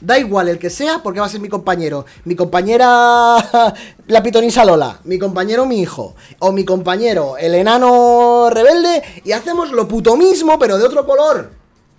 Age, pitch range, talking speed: 20-39, 175-260 Hz, 175 wpm